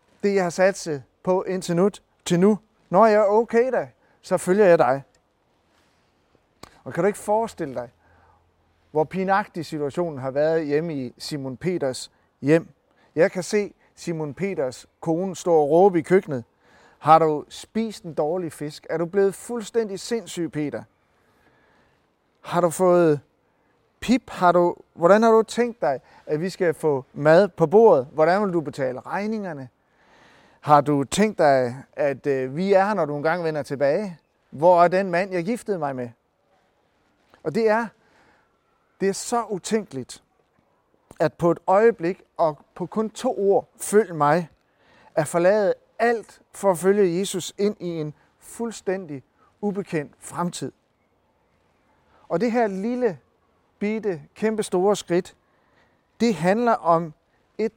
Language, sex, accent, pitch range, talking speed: Danish, male, native, 150-205 Hz, 150 wpm